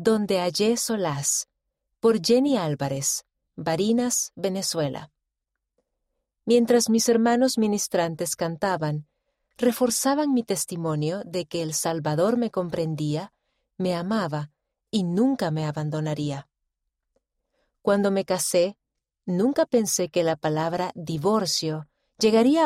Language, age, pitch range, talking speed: Spanish, 40-59, 165-225 Hz, 100 wpm